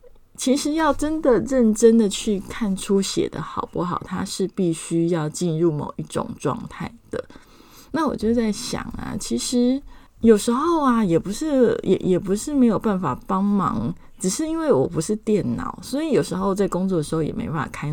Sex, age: female, 20-39